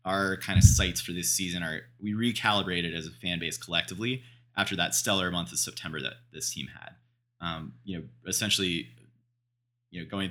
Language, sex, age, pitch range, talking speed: English, male, 30-49, 85-115 Hz, 185 wpm